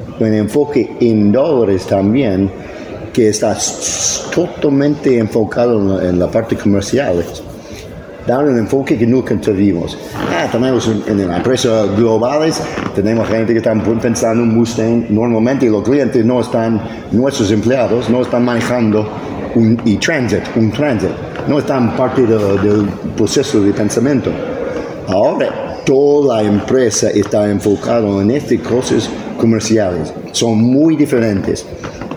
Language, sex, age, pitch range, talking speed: Spanish, male, 50-69, 100-125 Hz, 125 wpm